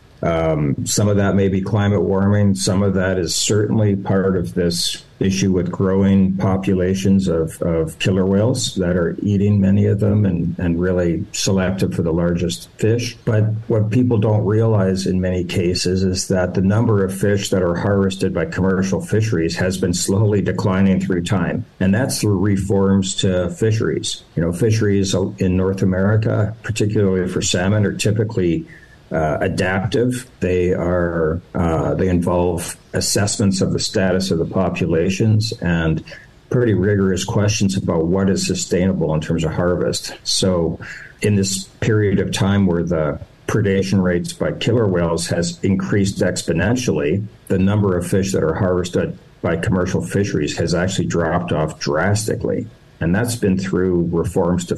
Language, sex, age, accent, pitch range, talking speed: English, male, 60-79, American, 90-105 Hz, 155 wpm